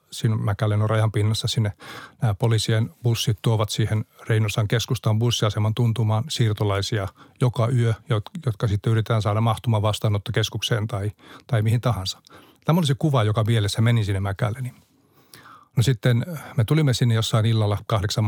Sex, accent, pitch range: male, native, 105-125 Hz